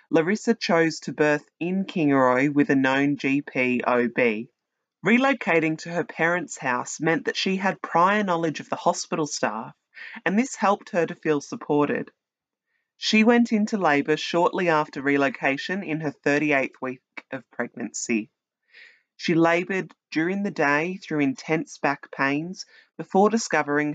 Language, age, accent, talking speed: English, 30-49, Australian, 145 wpm